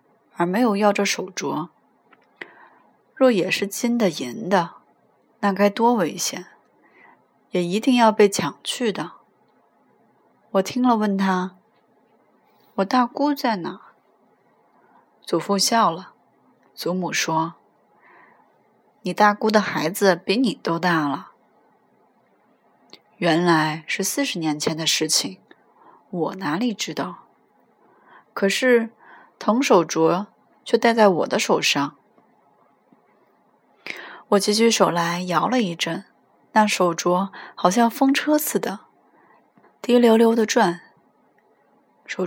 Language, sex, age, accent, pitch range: Chinese, female, 20-39, native, 175-230 Hz